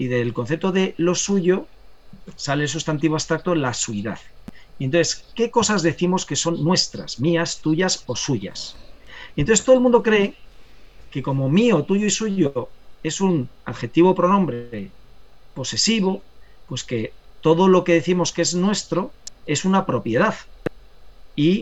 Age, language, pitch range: 40-59, Spanish, 135-190 Hz